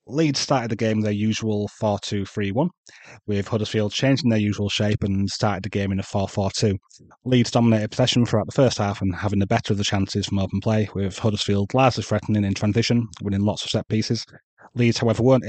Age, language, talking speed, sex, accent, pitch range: 30-49, English, 200 wpm, male, British, 100-110 Hz